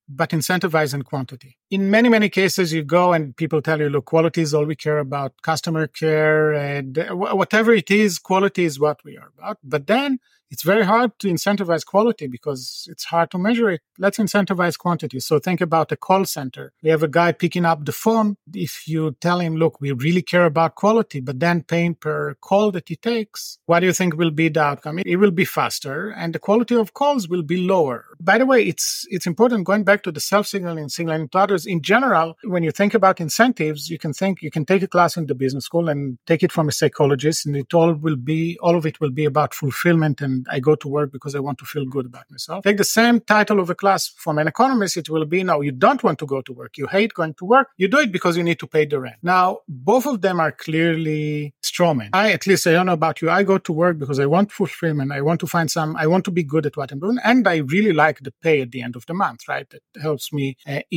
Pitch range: 150-195 Hz